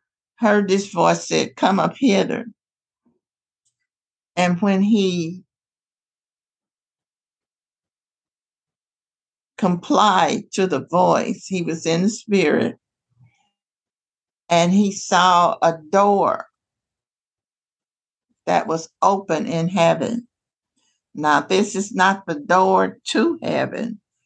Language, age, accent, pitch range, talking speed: English, 60-79, American, 160-210 Hz, 90 wpm